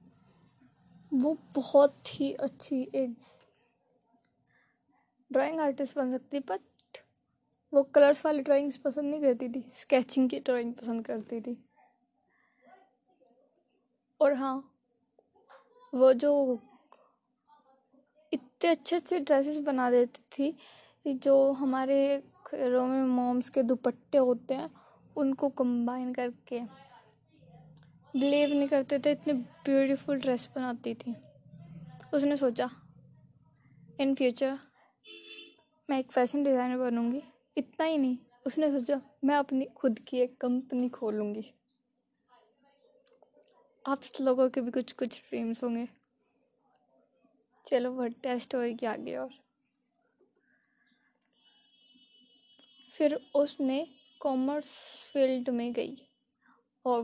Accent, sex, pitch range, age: native, female, 245-280 Hz, 20-39